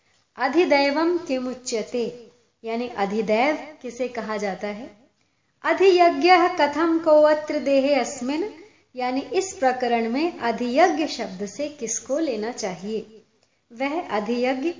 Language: Hindi